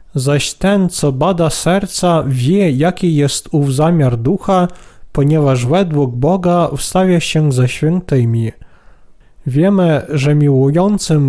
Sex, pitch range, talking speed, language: male, 135-170 Hz, 110 wpm, Polish